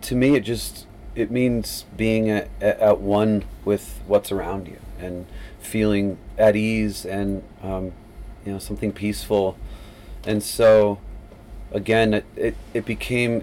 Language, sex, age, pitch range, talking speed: German, male, 30-49, 95-110 Hz, 140 wpm